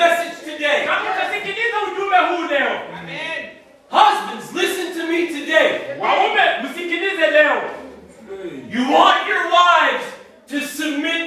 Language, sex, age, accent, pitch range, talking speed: English, male, 40-59, American, 245-335 Hz, 70 wpm